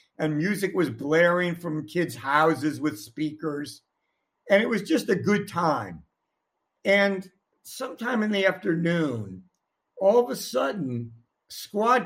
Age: 60-79